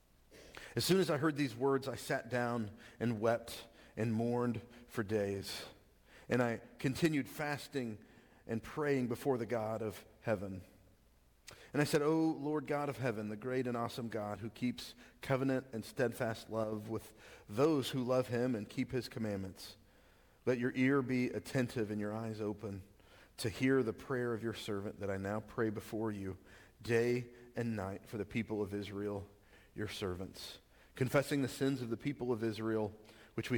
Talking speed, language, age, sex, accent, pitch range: 175 wpm, English, 40-59, male, American, 105-130 Hz